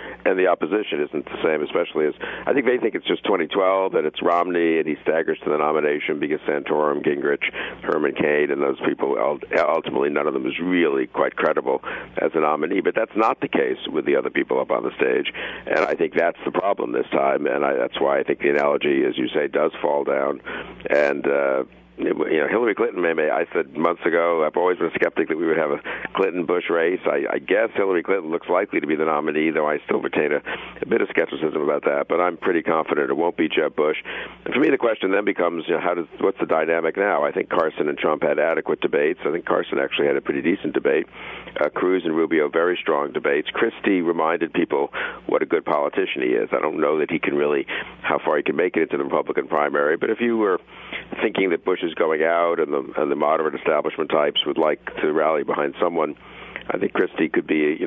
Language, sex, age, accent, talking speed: English, male, 60-79, American, 235 wpm